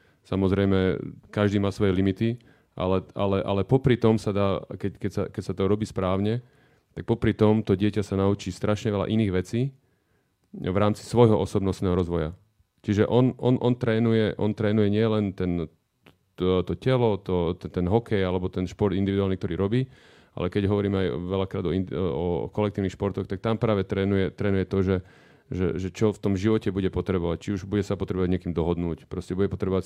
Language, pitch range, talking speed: Slovak, 95-105 Hz, 185 wpm